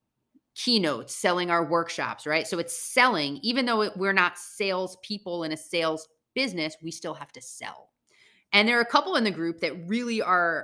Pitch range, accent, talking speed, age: 170-220 Hz, American, 190 wpm, 30-49